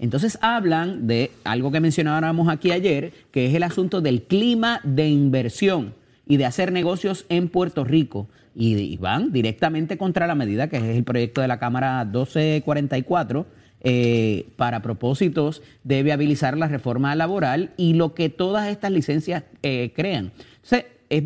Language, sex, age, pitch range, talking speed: Spanish, male, 30-49, 120-165 Hz, 150 wpm